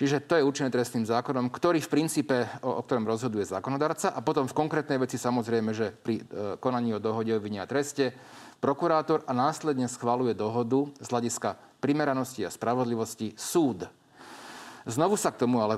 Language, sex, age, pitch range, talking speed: Slovak, male, 40-59, 115-140 Hz, 165 wpm